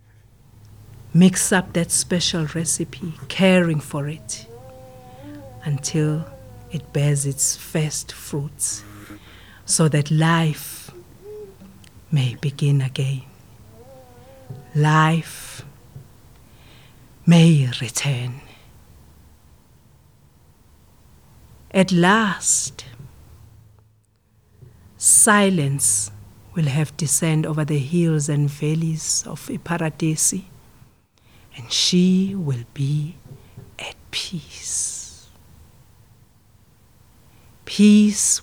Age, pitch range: 50-69, 110-165 Hz